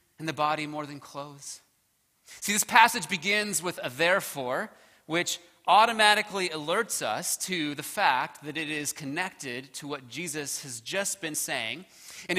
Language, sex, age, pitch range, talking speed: English, male, 30-49, 155-225 Hz, 155 wpm